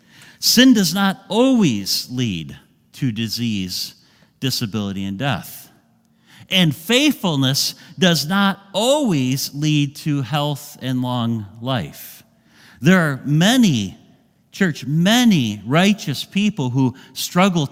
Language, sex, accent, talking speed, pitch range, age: English, male, American, 100 wpm, 140-195 Hz, 50-69